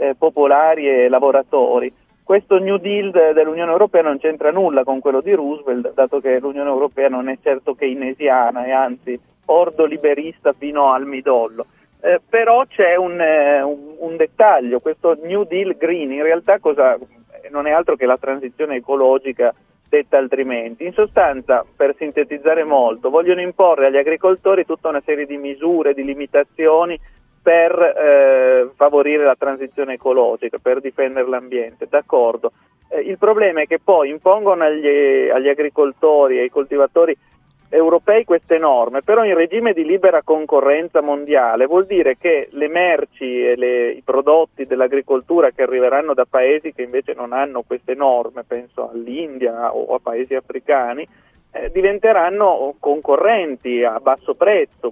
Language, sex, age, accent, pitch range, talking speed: Italian, male, 40-59, native, 135-170 Hz, 145 wpm